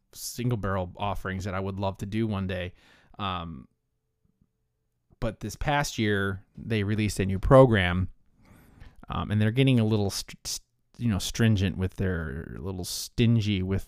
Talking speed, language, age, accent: 165 wpm, English, 30-49, American